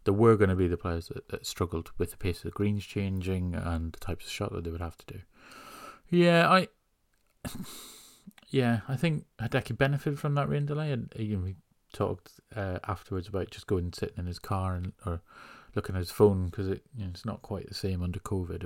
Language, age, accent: English, 30-49, British